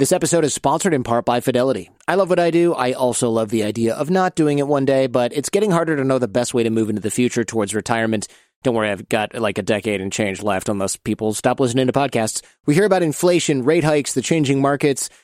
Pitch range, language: 120-155 Hz, English